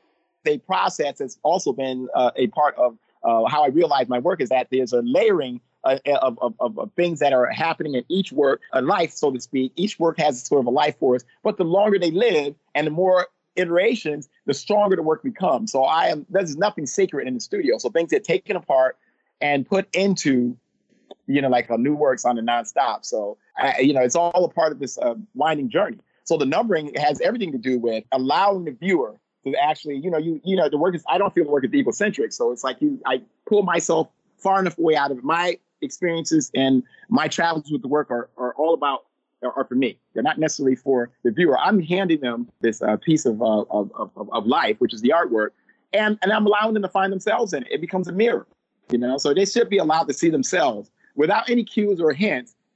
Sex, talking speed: male, 230 wpm